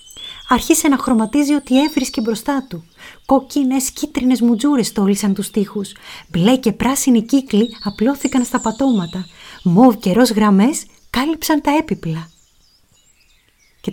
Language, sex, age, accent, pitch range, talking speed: Greek, female, 30-49, native, 180-235 Hz, 120 wpm